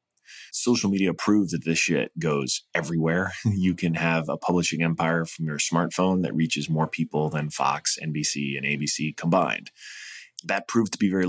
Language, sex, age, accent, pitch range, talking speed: English, male, 20-39, American, 80-90 Hz, 170 wpm